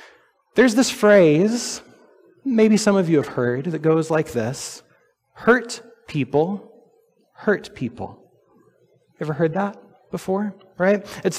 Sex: male